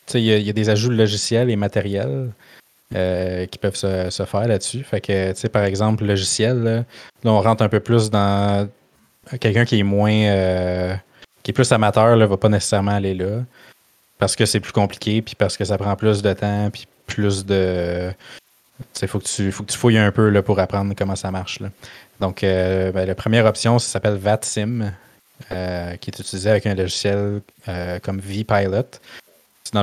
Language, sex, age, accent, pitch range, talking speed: French, male, 20-39, Canadian, 100-115 Hz, 190 wpm